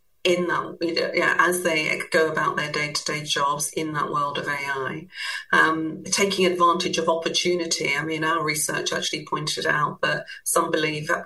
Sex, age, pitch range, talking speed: female, 40-59, 150-170 Hz, 175 wpm